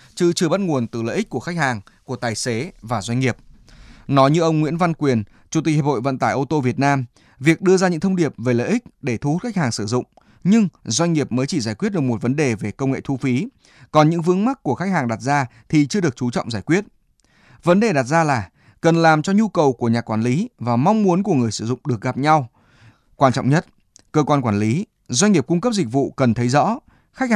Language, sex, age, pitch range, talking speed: Vietnamese, male, 20-39, 120-170 Hz, 265 wpm